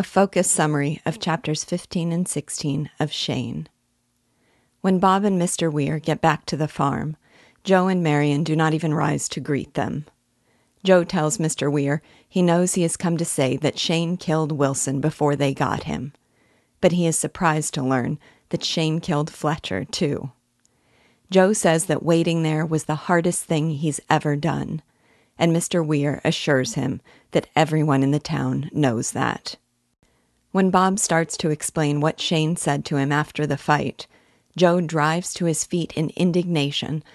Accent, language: American, English